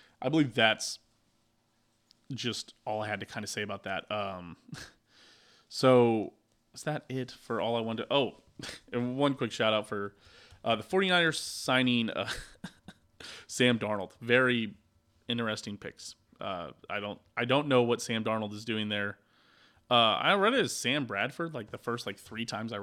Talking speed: 170 wpm